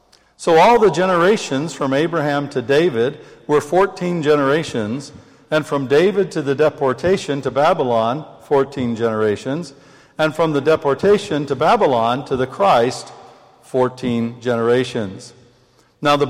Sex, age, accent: male, 60-79, American